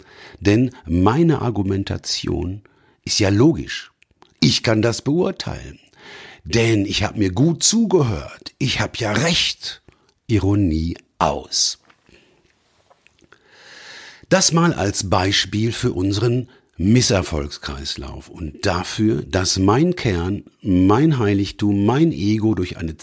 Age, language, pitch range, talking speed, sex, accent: 50-69, German, 90-115 Hz, 105 wpm, male, German